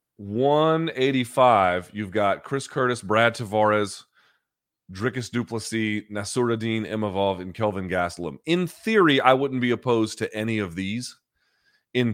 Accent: American